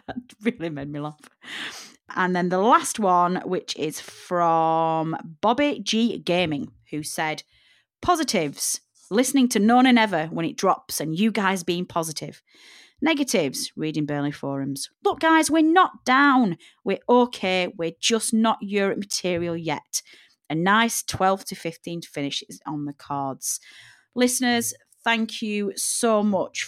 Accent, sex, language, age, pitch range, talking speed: British, female, English, 30-49, 155-220 Hz, 145 wpm